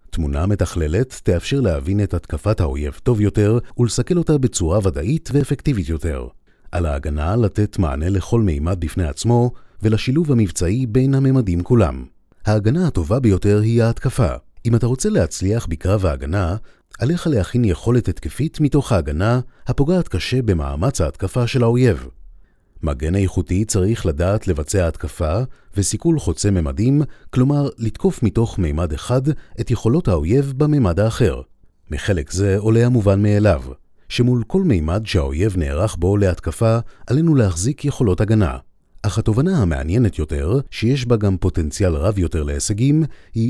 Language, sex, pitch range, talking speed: Hebrew, male, 90-125 Hz, 135 wpm